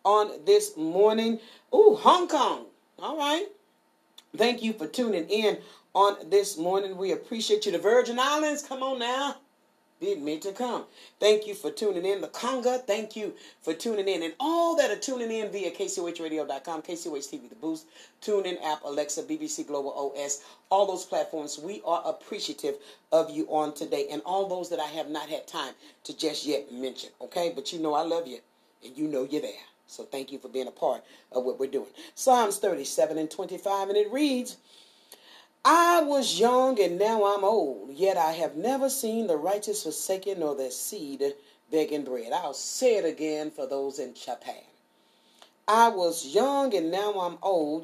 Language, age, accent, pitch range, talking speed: English, 40-59, American, 160-260 Hz, 185 wpm